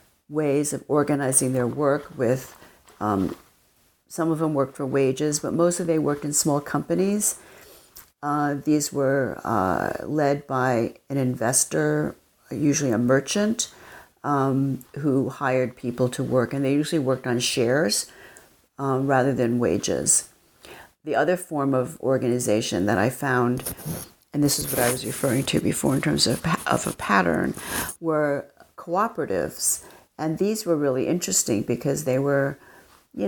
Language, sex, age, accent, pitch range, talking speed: English, female, 50-69, American, 130-150 Hz, 145 wpm